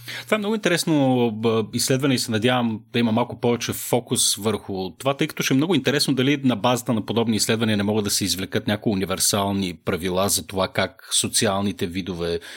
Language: Bulgarian